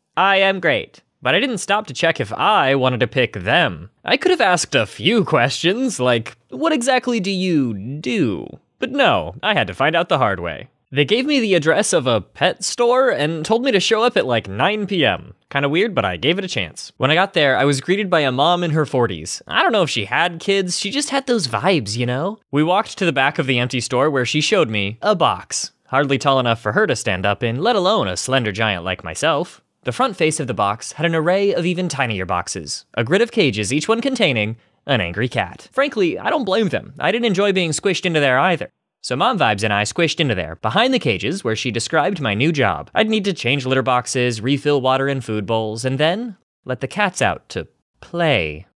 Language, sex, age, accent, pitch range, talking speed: English, male, 20-39, American, 120-195 Hz, 240 wpm